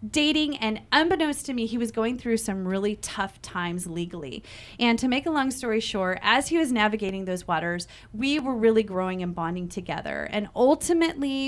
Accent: American